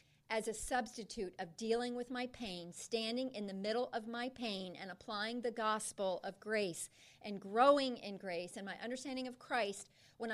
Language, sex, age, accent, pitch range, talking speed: English, female, 40-59, American, 200-260 Hz, 180 wpm